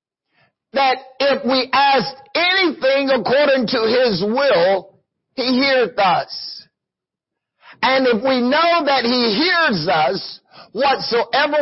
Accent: American